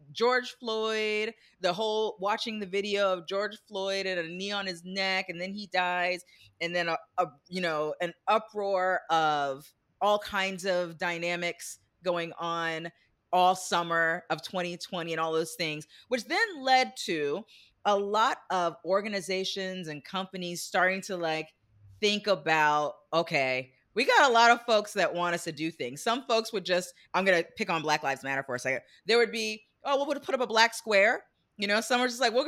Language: English